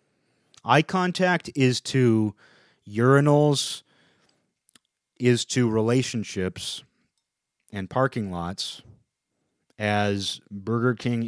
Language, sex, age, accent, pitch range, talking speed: English, male, 30-49, American, 100-130 Hz, 75 wpm